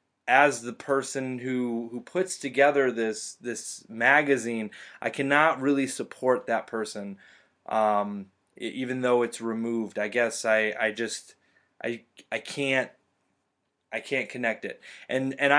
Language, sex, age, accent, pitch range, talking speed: English, male, 20-39, American, 110-130 Hz, 135 wpm